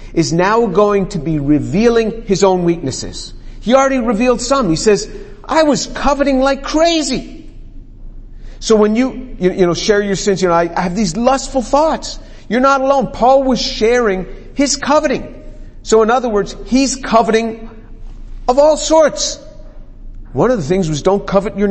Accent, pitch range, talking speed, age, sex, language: American, 145-240 Hz, 165 wpm, 50-69, male, English